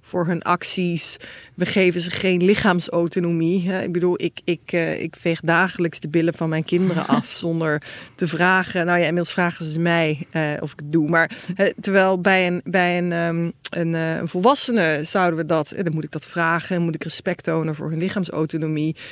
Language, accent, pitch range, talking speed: Dutch, Dutch, 165-195 Hz, 190 wpm